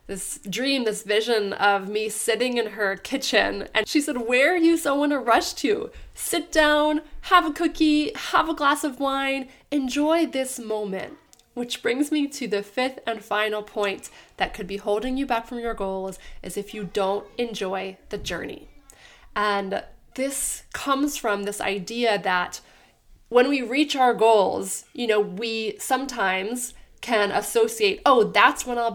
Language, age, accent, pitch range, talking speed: English, 20-39, American, 210-285 Hz, 170 wpm